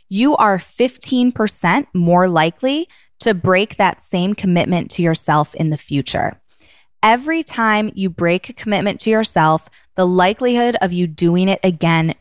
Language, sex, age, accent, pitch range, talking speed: English, female, 20-39, American, 165-215 Hz, 145 wpm